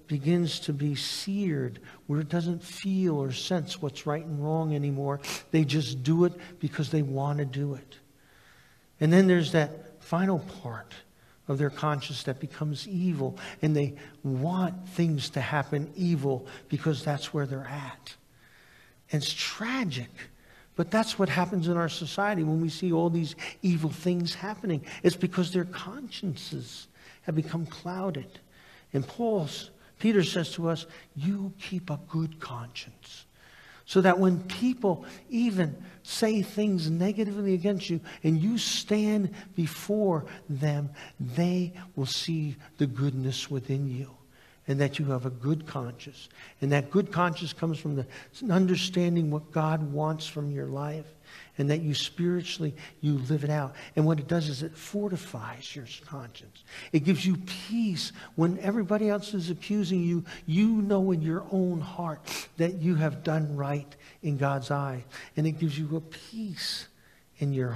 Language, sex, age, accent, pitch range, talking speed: English, male, 60-79, American, 145-180 Hz, 155 wpm